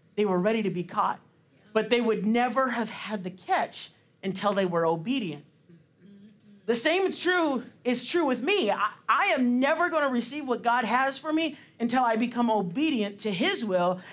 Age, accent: 40-59, American